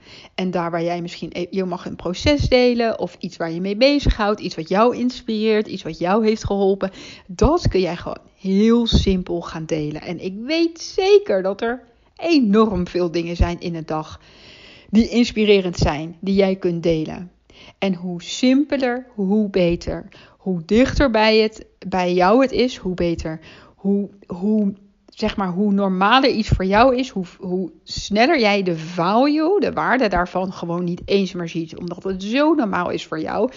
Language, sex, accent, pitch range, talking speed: Dutch, female, Dutch, 175-230 Hz, 175 wpm